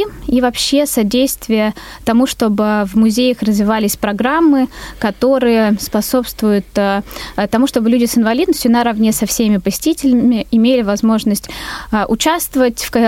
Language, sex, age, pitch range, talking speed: Russian, female, 20-39, 215-255 Hz, 105 wpm